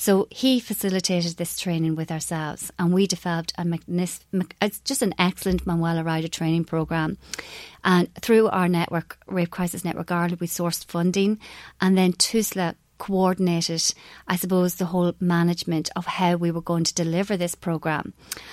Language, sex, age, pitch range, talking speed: English, female, 30-49, 170-195 Hz, 150 wpm